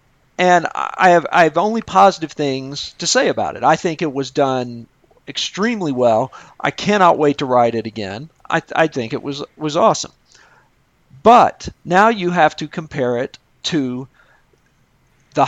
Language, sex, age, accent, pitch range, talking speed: English, male, 50-69, American, 130-170 Hz, 165 wpm